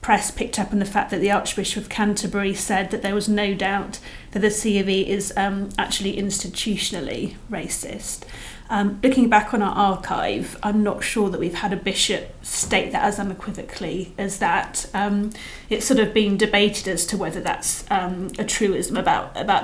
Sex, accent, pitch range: female, British, 195-210 Hz